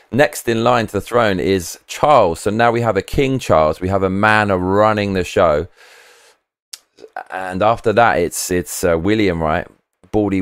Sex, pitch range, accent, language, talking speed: male, 80-100 Hz, British, English, 180 wpm